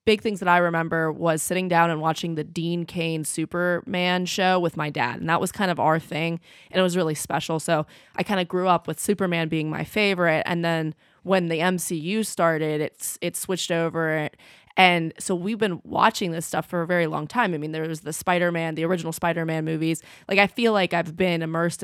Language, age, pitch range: English, 20-39, 160-185 Hz